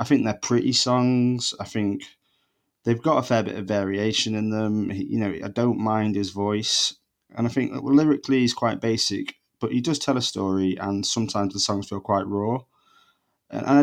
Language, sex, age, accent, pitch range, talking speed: English, male, 20-39, British, 100-120 Hz, 200 wpm